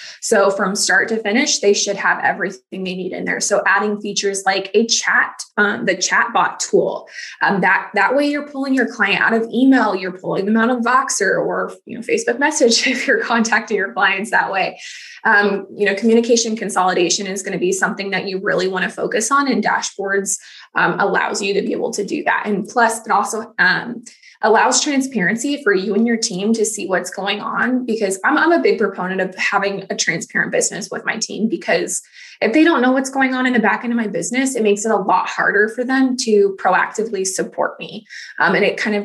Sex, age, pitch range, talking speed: female, 20-39, 200-250 Hz, 215 wpm